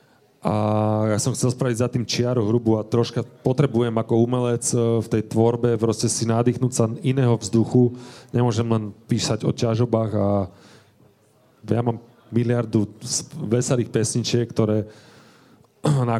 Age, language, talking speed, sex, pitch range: 30-49, Slovak, 135 wpm, male, 105-120 Hz